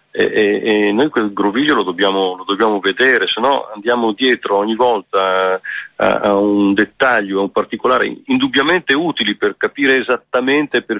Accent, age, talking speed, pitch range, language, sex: native, 40-59, 165 wpm, 100-125 Hz, Italian, male